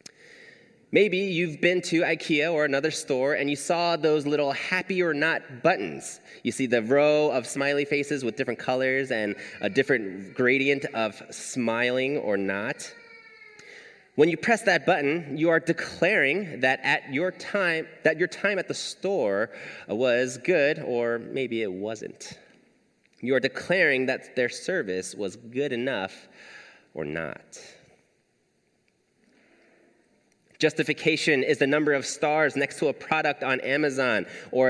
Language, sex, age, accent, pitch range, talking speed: English, male, 30-49, American, 130-170 Hz, 145 wpm